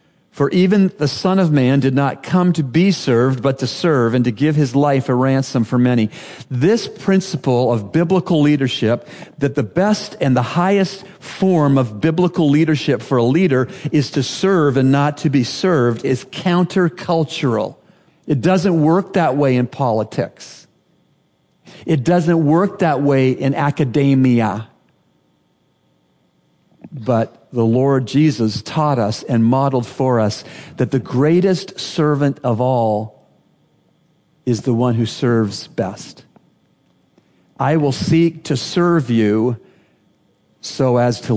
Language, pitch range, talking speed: English, 120-165 Hz, 140 wpm